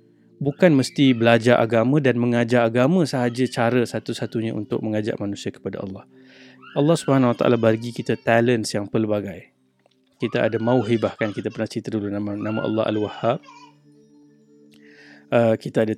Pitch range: 105-130 Hz